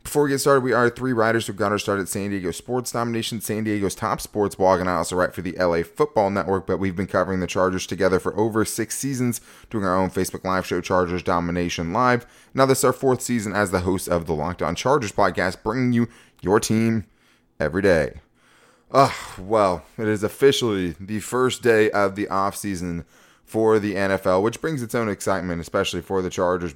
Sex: male